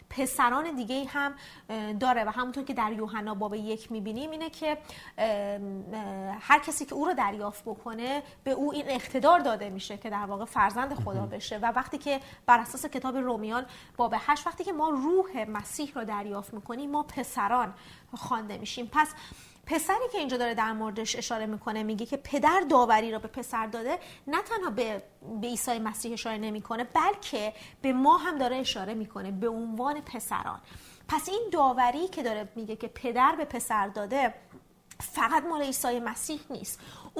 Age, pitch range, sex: 30-49, 220-295 Hz, female